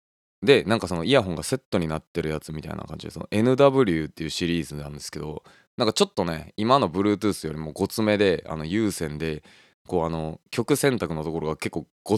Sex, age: male, 20-39